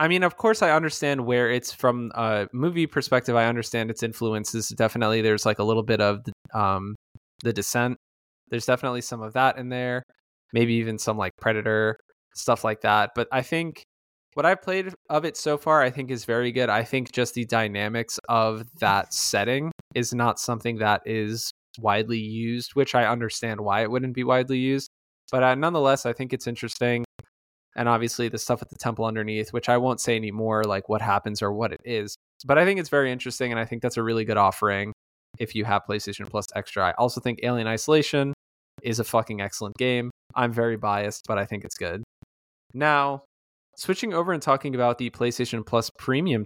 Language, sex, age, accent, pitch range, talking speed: English, male, 20-39, American, 110-130 Hz, 200 wpm